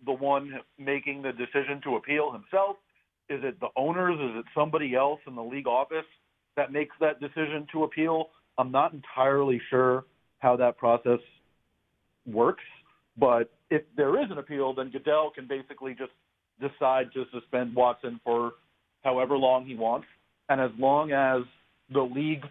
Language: English